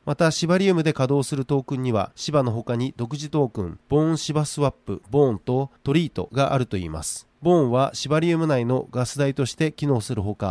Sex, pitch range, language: male, 125-155 Hz, Japanese